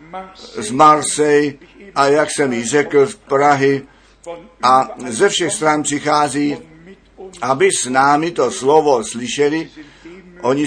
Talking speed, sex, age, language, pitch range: 120 wpm, male, 50-69, Czech, 135-170 Hz